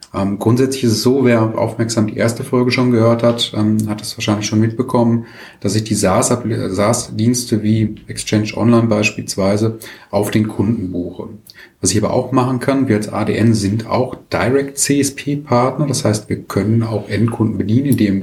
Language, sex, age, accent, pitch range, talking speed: German, male, 30-49, German, 100-120 Hz, 165 wpm